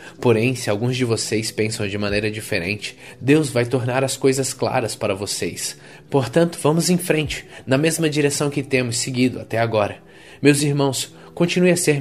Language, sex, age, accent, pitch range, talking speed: Portuguese, male, 20-39, Brazilian, 100-130 Hz, 170 wpm